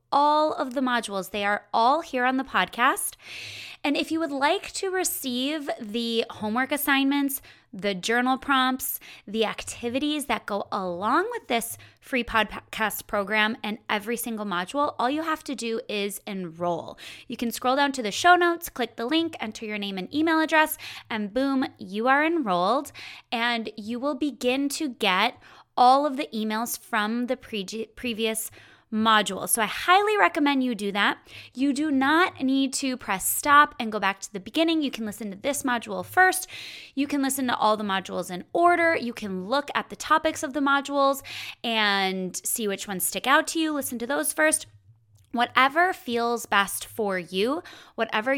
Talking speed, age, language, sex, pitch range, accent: 180 wpm, 20-39, English, female, 215-285 Hz, American